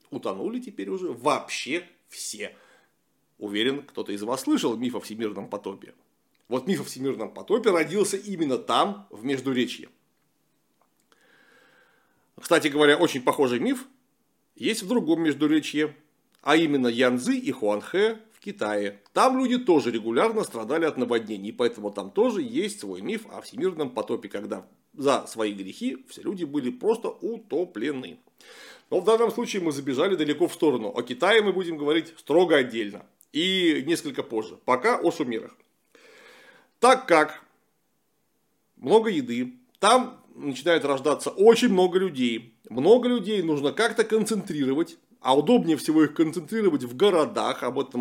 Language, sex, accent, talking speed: Russian, male, native, 140 wpm